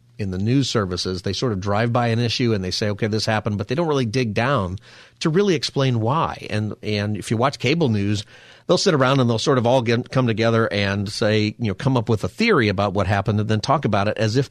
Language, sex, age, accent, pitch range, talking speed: English, male, 40-59, American, 100-125 Hz, 265 wpm